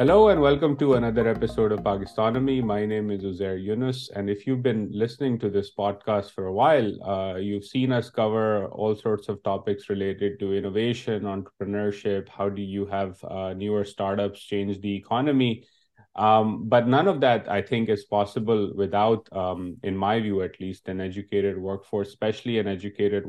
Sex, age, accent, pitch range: male, 30-49, Indian, 100-110 Hz